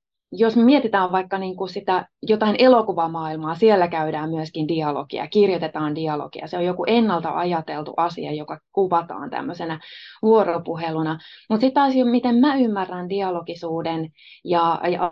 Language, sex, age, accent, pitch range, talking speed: Finnish, female, 20-39, native, 160-200 Hz, 135 wpm